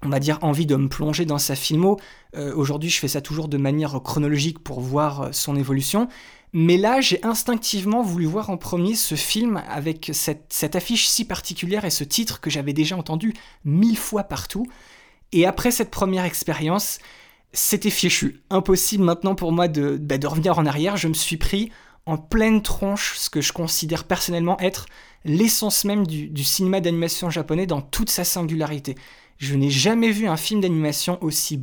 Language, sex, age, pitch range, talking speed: French, male, 20-39, 145-195 Hz, 185 wpm